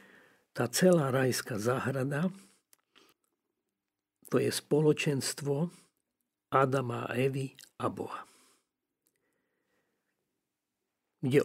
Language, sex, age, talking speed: Slovak, male, 50-69, 70 wpm